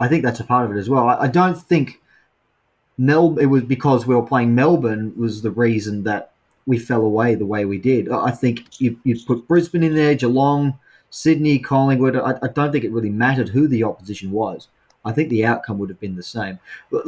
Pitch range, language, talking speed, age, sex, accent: 110-145 Hz, English, 220 wpm, 30-49, male, Australian